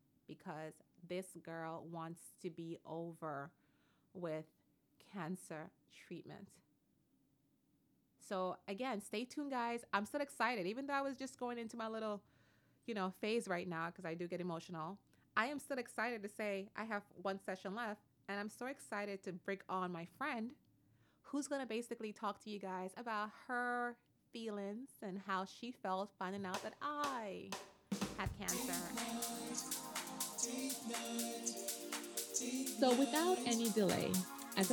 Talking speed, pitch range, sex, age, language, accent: 145 wpm, 170-235 Hz, female, 30-49, English, American